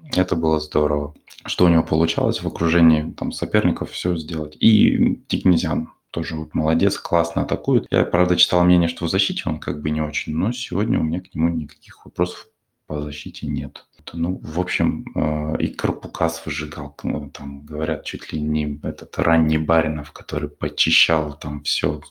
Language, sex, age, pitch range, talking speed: Russian, male, 20-39, 75-90 Hz, 165 wpm